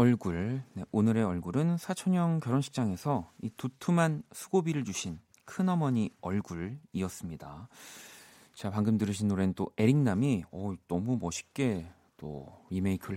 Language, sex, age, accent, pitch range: Korean, male, 40-59, native, 90-130 Hz